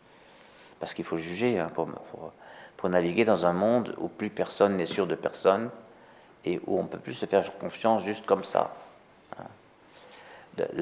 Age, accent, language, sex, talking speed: 50-69, French, French, male, 175 wpm